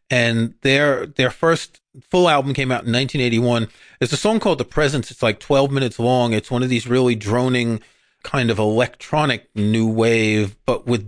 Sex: male